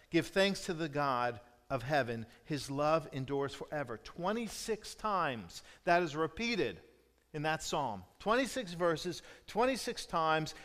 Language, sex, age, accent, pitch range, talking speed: English, male, 50-69, American, 145-205 Hz, 130 wpm